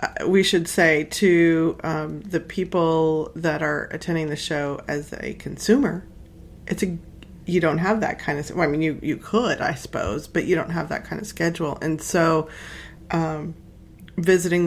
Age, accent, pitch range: 30-49, American, 155-185 Hz